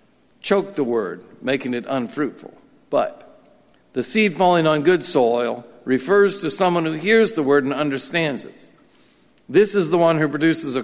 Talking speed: 165 wpm